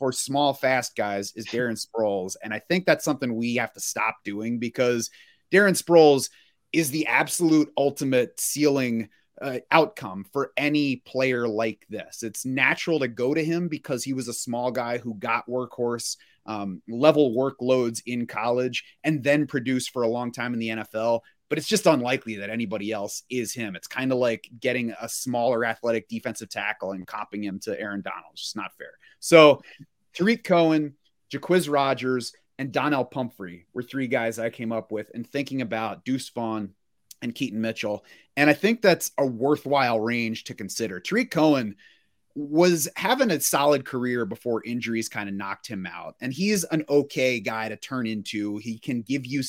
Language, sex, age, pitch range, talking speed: English, male, 30-49, 115-140 Hz, 180 wpm